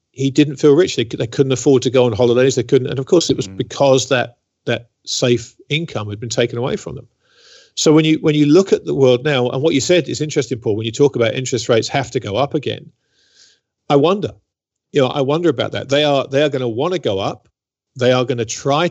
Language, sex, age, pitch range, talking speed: English, male, 40-59, 120-145 Hz, 255 wpm